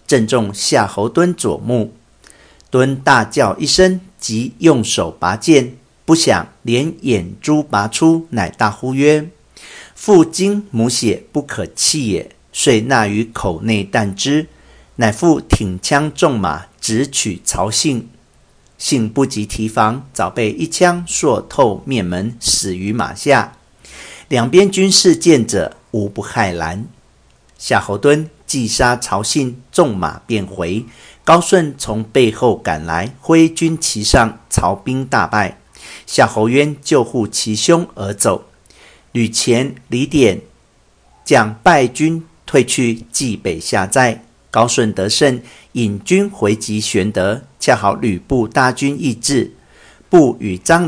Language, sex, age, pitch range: Chinese, male, 50-69, 105-150 Hz